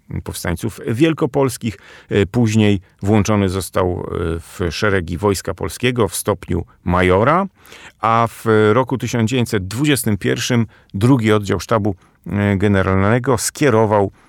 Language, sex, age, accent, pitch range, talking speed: Polish, male, 40-59, native, 95-125 Hz, 90 wpm